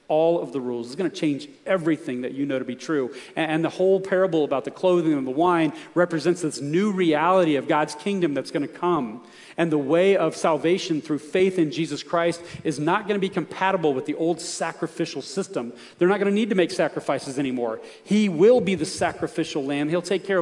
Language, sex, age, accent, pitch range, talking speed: English, male, 40-59, American, 150-185 Hz, 220 wpm